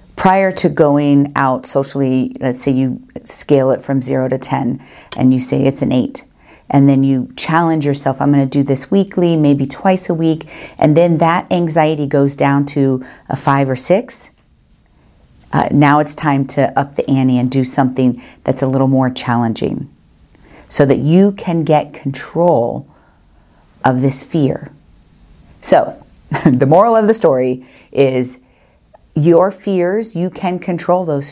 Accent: American